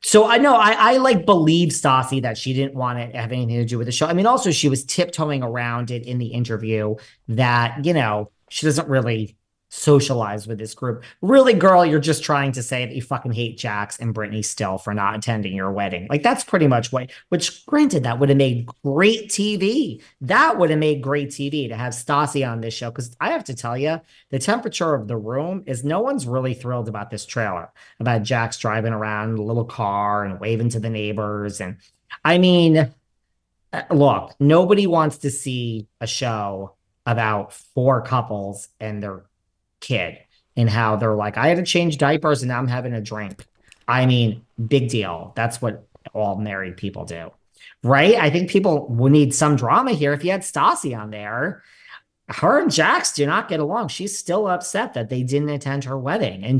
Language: English